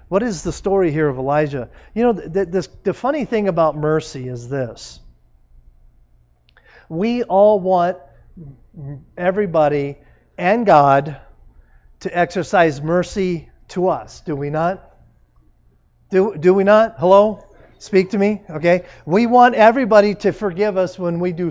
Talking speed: 140 wpm